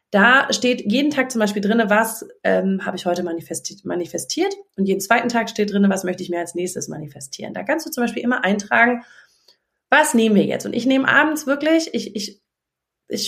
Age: 30-49